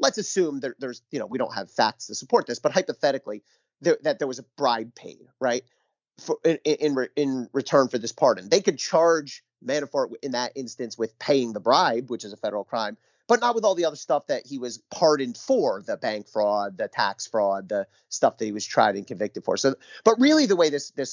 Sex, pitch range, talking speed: male, 120-165 Hz, 235 wpm